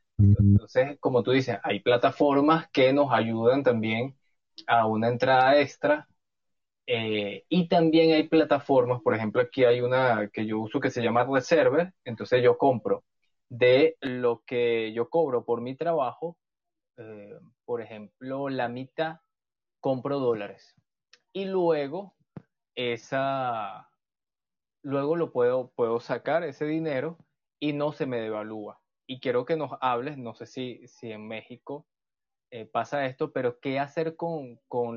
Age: 20-39